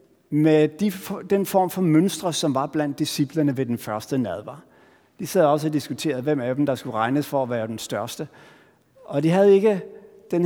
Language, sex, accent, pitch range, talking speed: Danish, male, native, 140-195 Hz, 200 wpm